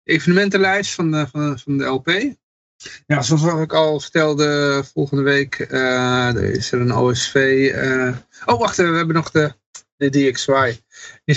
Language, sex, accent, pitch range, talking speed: Dutch, male, Dutch, 125-150 Hz, 160 wpm